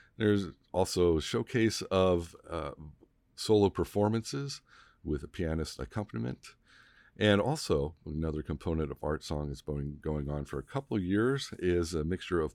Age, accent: 50-69, American